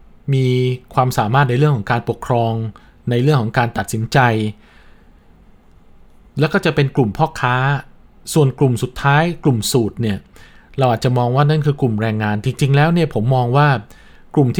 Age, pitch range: 20-39, 115-150 Hz